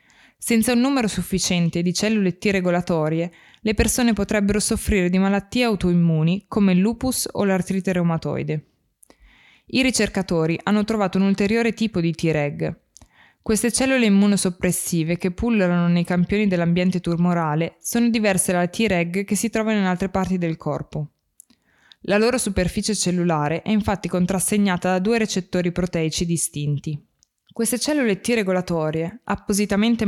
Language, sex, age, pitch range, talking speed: Italian, female, 20-39, 175-220 Hz, 135 wpm